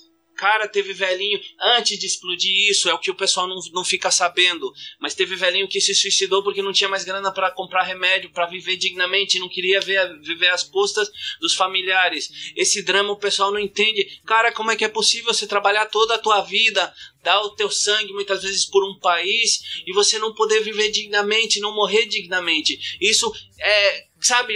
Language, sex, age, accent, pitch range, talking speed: Portuguese, male, 20-39, Brazilian, 190-225 Hz, 195 wpm